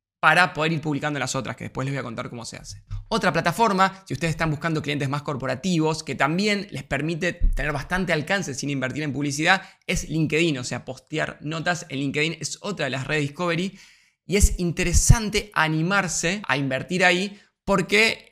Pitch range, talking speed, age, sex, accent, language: 145-185 Hz, 185 wpm, 20-39, male, Argentinian, Spanish